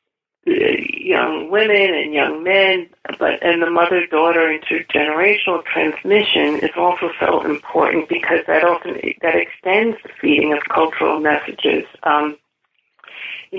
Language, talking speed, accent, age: English, 120 wpm, American, 40-59